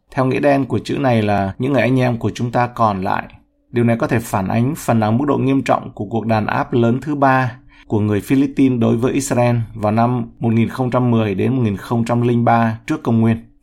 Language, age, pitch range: Vietnamese, 20-39, 110-130 Hz